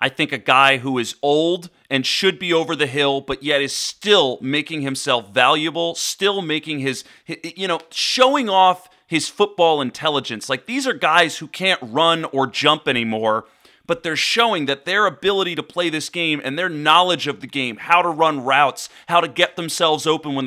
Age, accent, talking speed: 30-49, American, 195 wpm